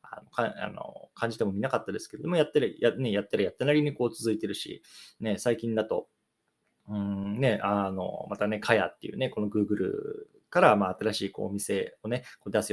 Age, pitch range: 20-39, 100-125 Hz